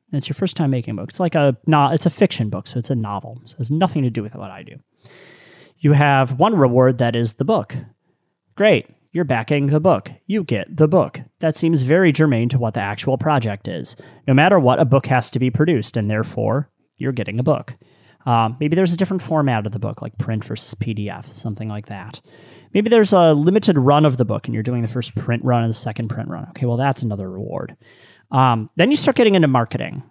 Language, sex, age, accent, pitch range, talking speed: English, male, 30-49, American, 120-165 Hz, 240 wpm